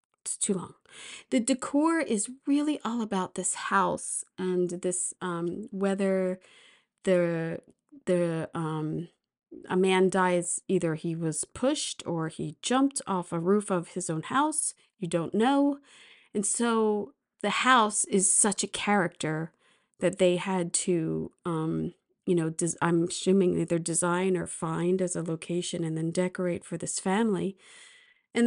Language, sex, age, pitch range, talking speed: English, female, 30-49, 175-245 Hz, 145 wpm